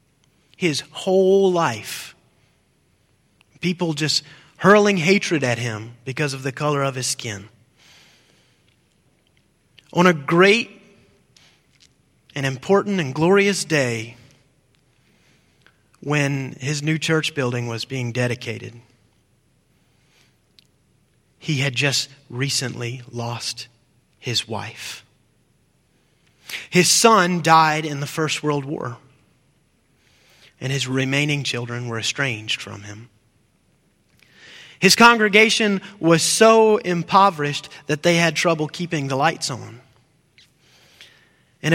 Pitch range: 120-170 Hz